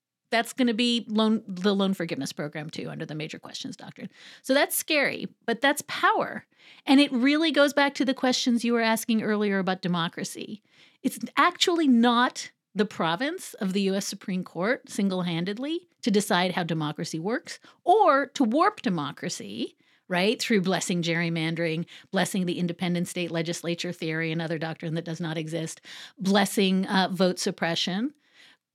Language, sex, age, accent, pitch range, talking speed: English, female, 50-69, American, 185-255 Hz, 155 wpm